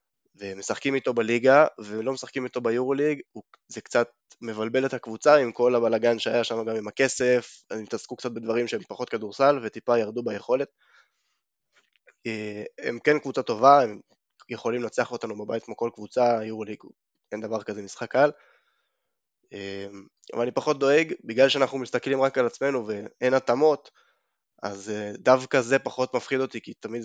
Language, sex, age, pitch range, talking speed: Hebrew, male, 20-39, 115-140 Hz, 155 wpm